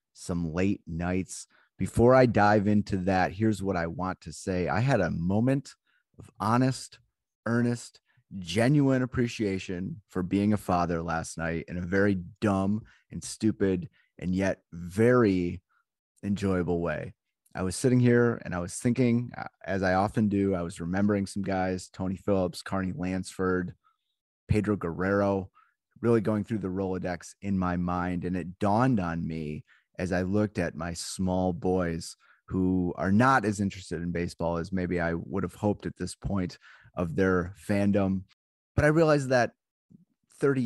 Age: 30-49